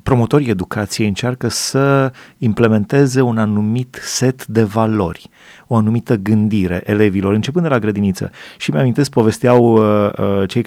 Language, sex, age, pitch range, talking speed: Romanian, male, 30-49, 105-130 Hz, 130 wpm